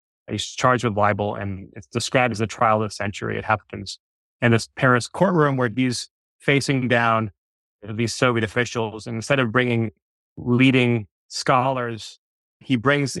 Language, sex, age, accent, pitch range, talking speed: English, male, 30-49, American, 110-125 Hz, 155 wpm